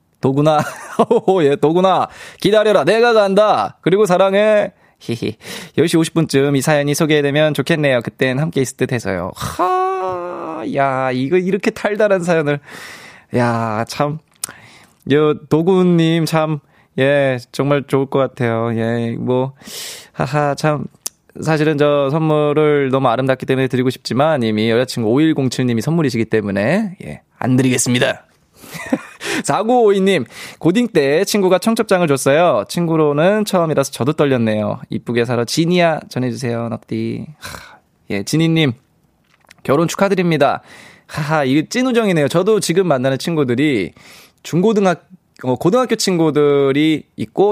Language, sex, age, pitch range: Korean, male, 20-39, 130-185 Hz